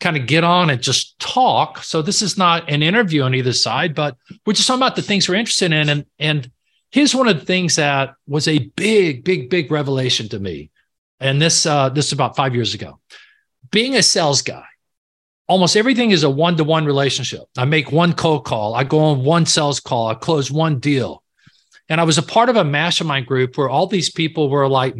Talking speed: 225 wpm